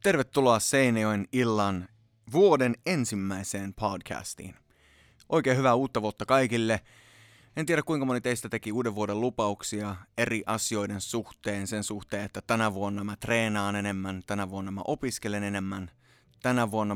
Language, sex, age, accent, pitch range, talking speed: Finnish, male, 20-39, native, 100-125 Hz, 135 wpm